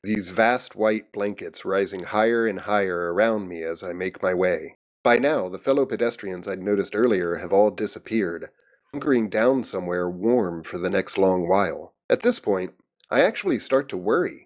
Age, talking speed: 30-49, 180 wpm